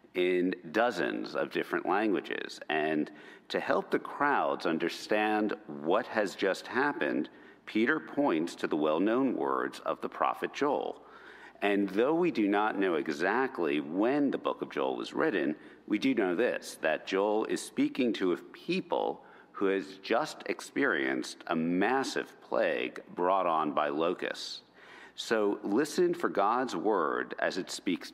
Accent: American